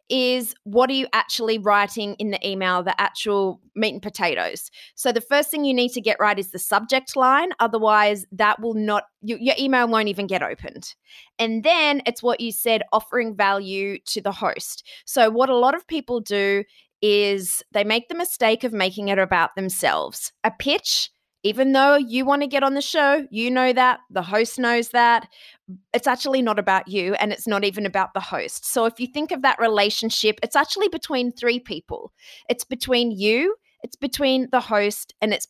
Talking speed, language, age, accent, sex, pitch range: 195 wpm, English, 20-39, Australian, female, 200-260 Hz